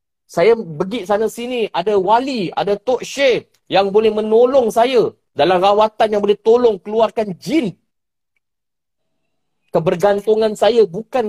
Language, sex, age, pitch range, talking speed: Malay, male, 40-59, 185-225 Hz, 120 wpm